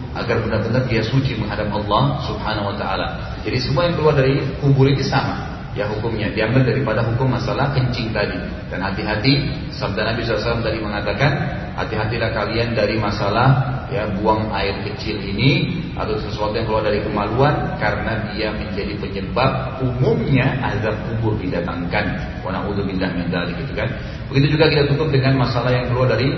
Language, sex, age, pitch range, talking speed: Indonesian, male, 40-59, 105-135 Hz, 160 wpm